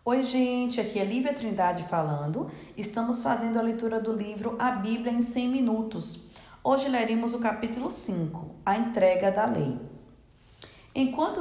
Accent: Brazilian